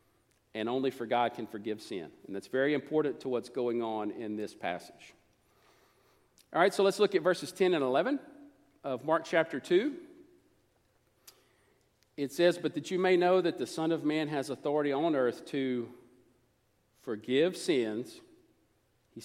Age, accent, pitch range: 50-69, American, 120-180 Hz